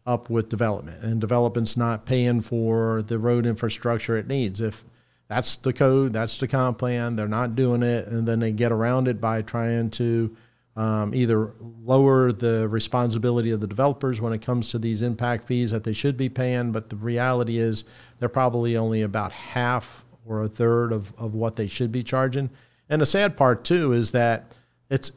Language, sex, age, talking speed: English, male, 50-69, 195 wpm